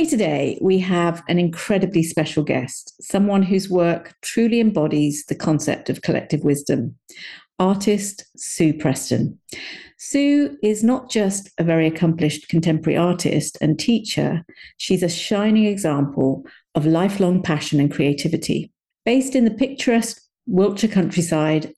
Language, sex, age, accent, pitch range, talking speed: English, female, 50-69, British, 160-205 Hz, 125 wpm